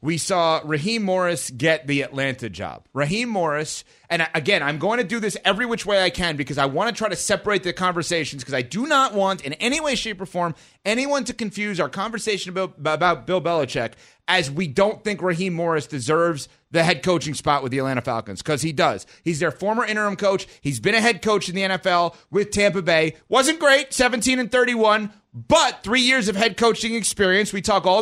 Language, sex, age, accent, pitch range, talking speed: English, male, 30-49, American, 165-220 Hz, 215 wpm